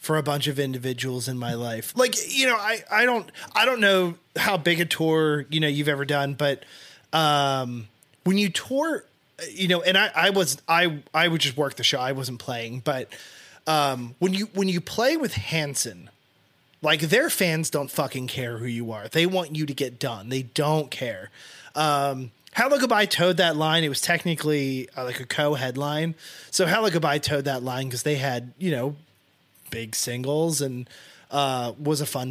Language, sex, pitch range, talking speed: English, male, 130-165 Hz, 195 wpm